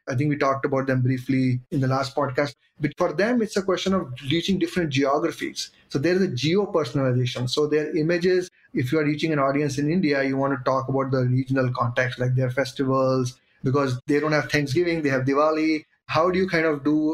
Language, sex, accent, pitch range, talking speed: English, male, Indian, 130-160 Hz, 215 wpm